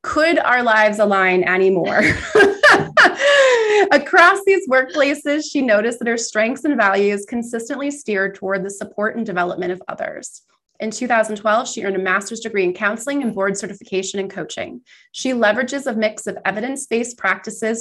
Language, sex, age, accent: English, female, 30-49, American